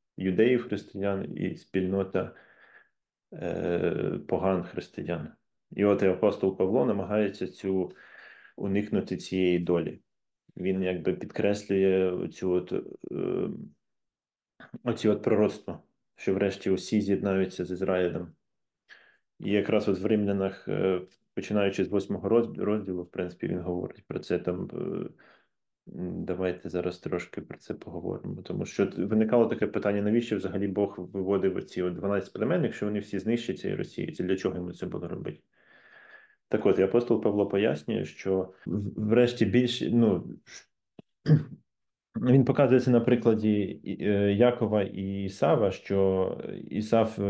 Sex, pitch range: male, 95-105 Hz